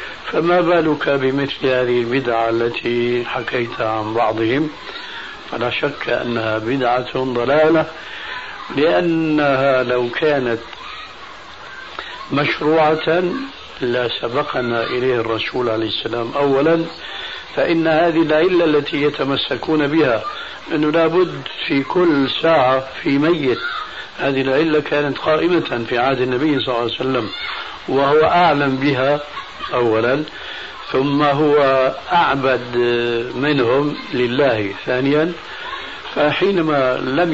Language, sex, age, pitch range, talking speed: Arabic, male, 60-79, 120-155 Hz, 100 wpm